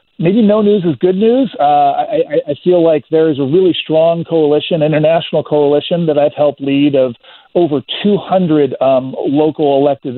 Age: 40-59